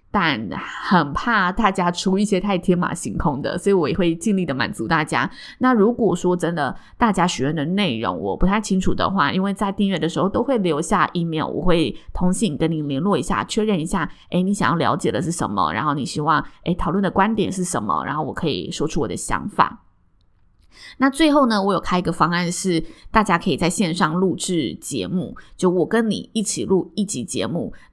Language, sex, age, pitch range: Chinese, female, 20-39, 160-205 Hz